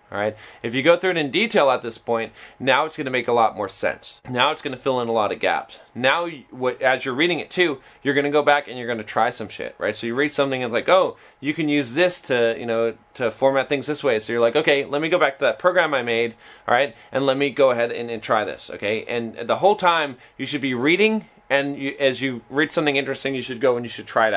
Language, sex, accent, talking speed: English, male, American, 275 wpm